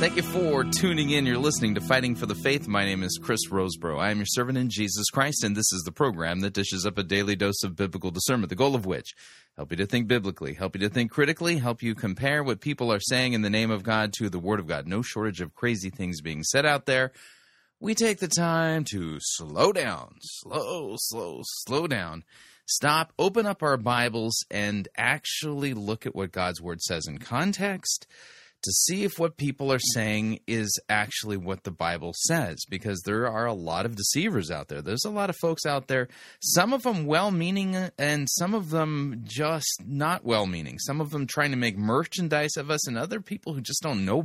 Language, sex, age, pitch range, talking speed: English, male, 30-49, 100-155 Hz, 215 wpm